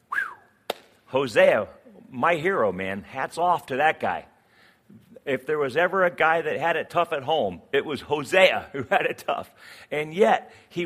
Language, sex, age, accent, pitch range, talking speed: English, male, 50-69, American, 115-170 Hz, 170 wpm